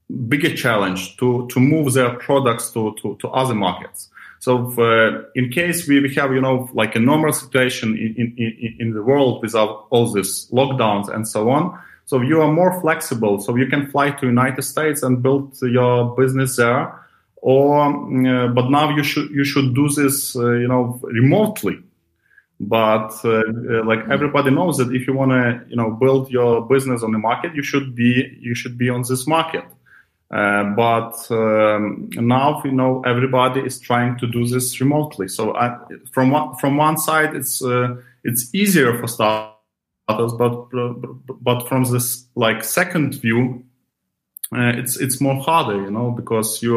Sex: male